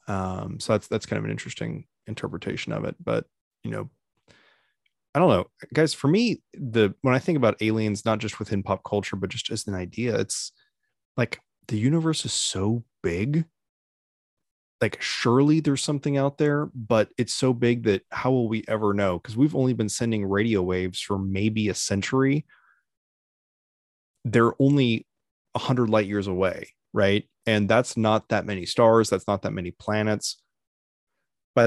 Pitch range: 100-125 Hz